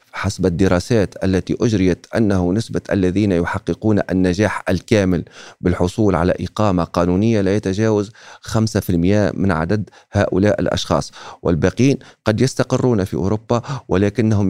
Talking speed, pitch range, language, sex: 110 wpm, 95-115 Hz, Arabic, male